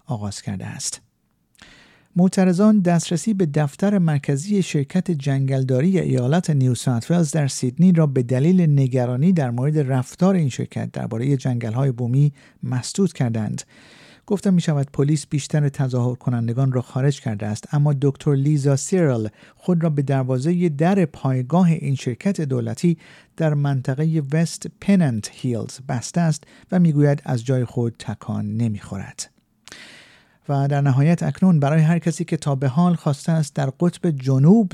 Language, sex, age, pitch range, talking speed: Persian, male, 50-69, 130-170 Hz, 140 wpm